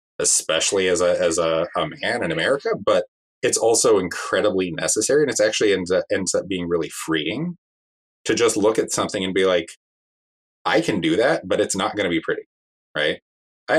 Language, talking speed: English, 190 wpm